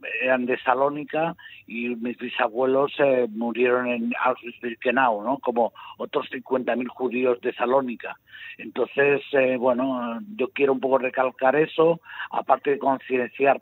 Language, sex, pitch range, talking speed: Spanish, male, 120-135 Hz, 130 wpm